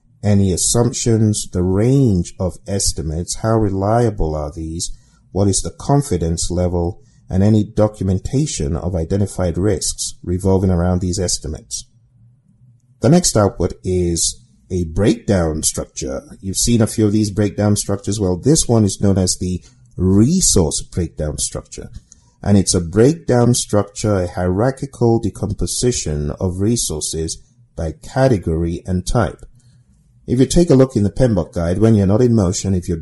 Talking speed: 145 wpm